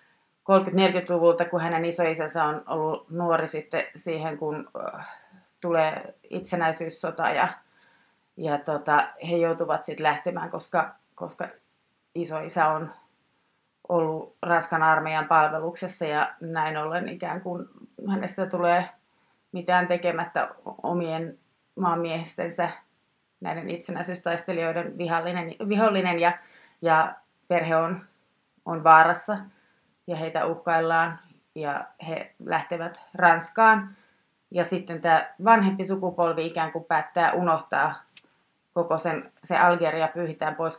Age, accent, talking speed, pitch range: 30-49, native, 100 wpm, 160-175 Hz